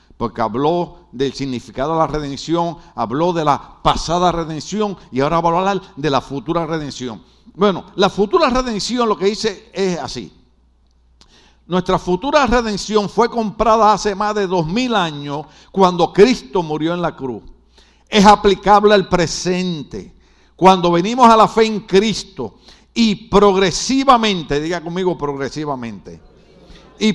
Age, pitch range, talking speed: 60-79, 125-205 Hz, 140 wpm